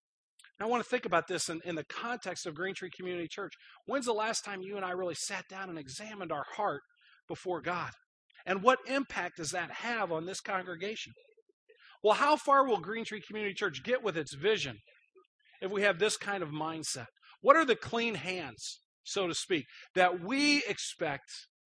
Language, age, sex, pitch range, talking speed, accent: English, 40-59, male, 180-235 Hz, 195 wpm, American